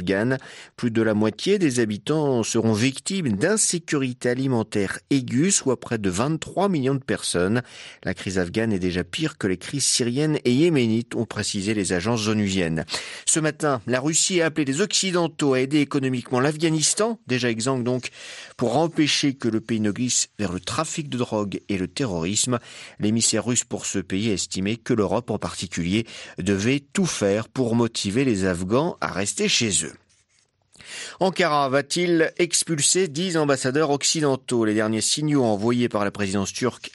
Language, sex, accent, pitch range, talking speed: French, male, French, 100-140 Hz, 165 wpm